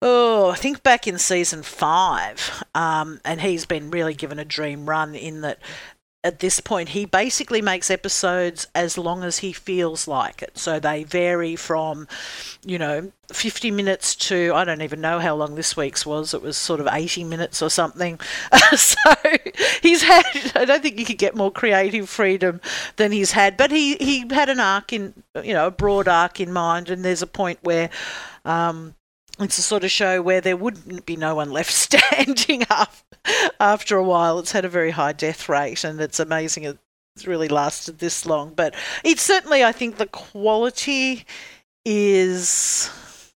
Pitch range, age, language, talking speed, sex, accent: 160-210 Hz, 50-69, English, 185 wpm, female, Australian